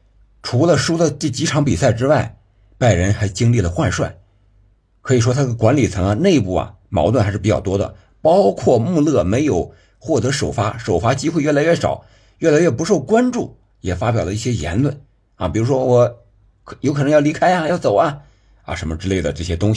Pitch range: 100-125 Hz